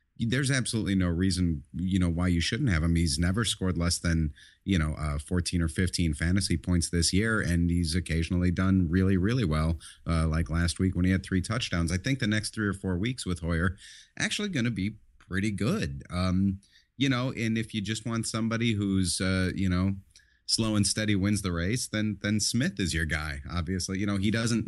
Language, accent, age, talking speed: English, American, 30-49, 215 wpm